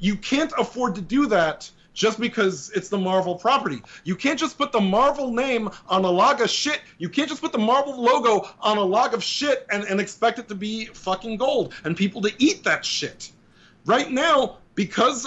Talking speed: 210 wpm